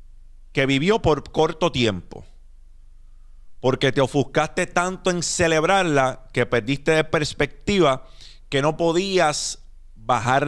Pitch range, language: 110-150 Hz, Spanish